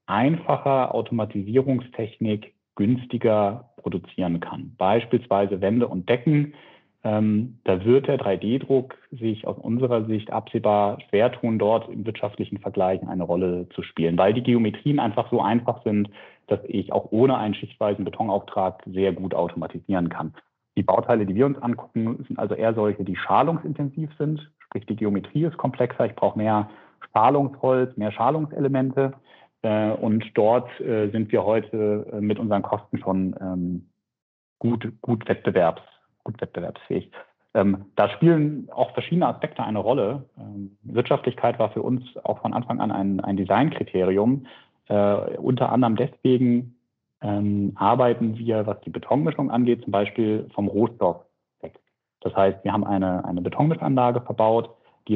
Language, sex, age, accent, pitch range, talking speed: German, male, 40-59, German, 100-125 Hz, 145 wpm